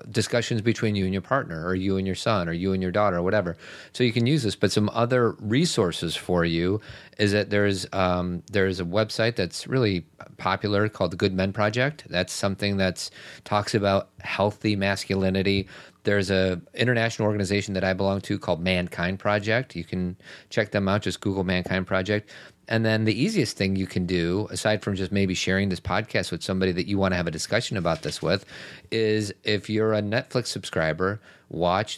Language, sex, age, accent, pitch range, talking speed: English, male, 40-59, American, 90-105 Hz, 195 wpm